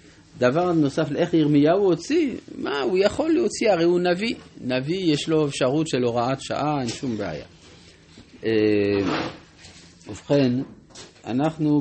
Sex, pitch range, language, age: male, 100-150 Hz, Hebrew, 50-69